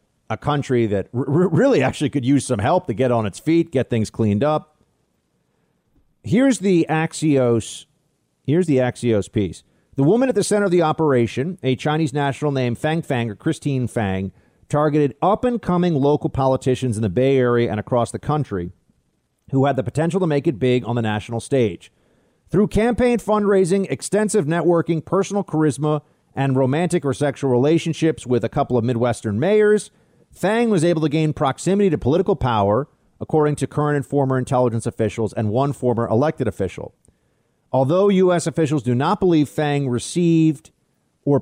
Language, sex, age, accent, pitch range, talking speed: English, male, 40-59, American, 120-160 Hz, 170 wpm